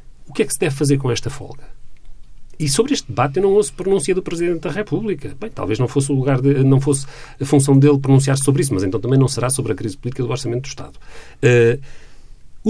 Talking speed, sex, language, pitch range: 240 wpm, male, Portuguese, 120-150 Hz